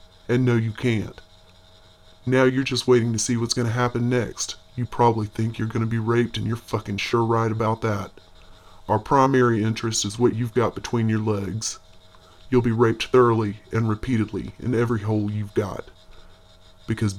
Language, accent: English, American